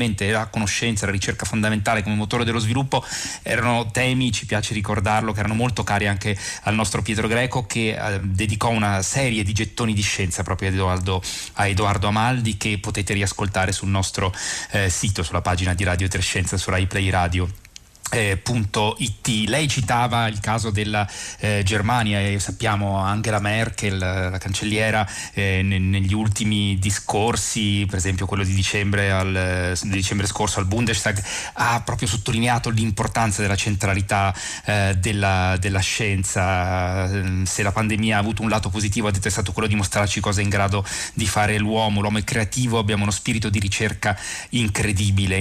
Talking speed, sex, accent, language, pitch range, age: 170 wpm, male, native, Italian, 95-110 Hz, 30-49